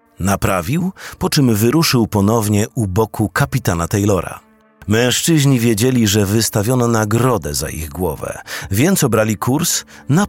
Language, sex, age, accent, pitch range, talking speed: Polish, male, 40-59, native, 95-125 Hz, 120 wpm